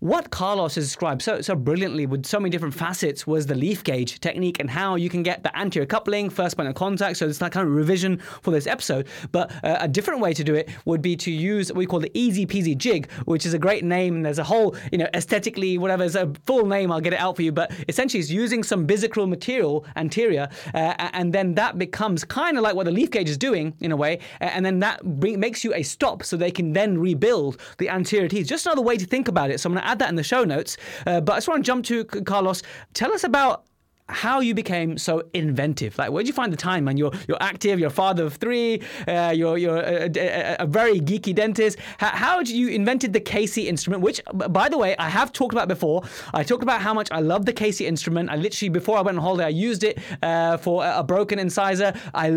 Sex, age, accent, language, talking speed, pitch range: male, 20-39, British, English, 250 wpm, 165-210 Hz